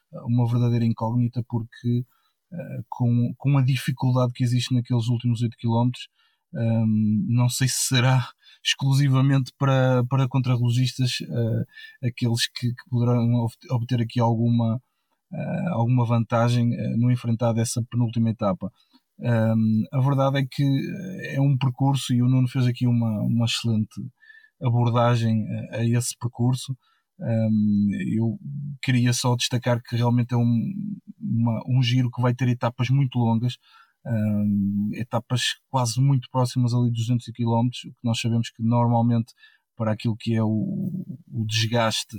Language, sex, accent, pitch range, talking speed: Portuguese, male, Portuguese, 115-130 Hz, 130 wpm